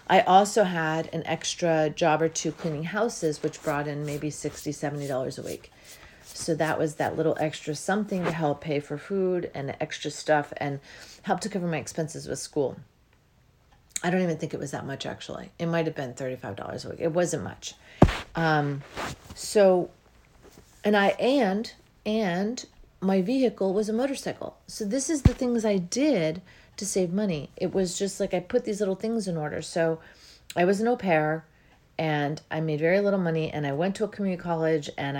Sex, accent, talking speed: female, American, 195 wpm